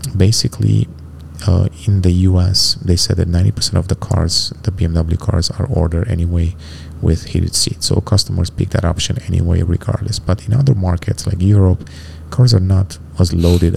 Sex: male